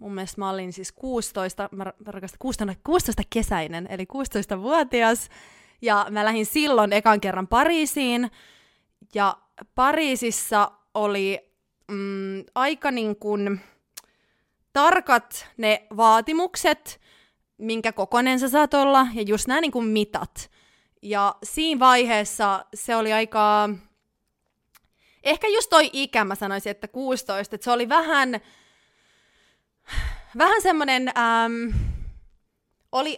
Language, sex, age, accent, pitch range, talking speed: Finnish, female, 20-39, native, 205-260 Hz, 105 wpm